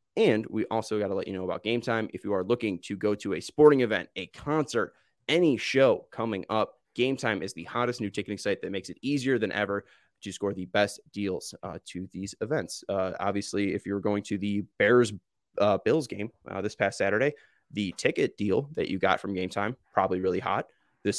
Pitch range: 100-120 Hz